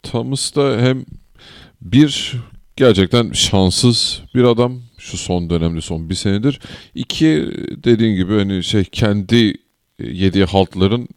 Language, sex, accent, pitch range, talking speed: Turkish, male, native, 85-105 Hz, 120 wpm